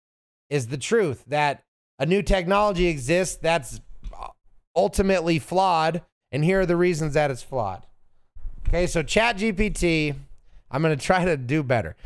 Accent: American